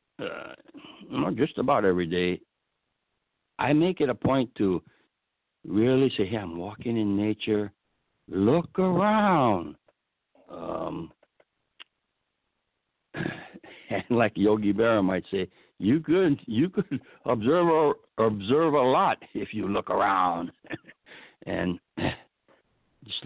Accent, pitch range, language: American, 105-140 Hz, English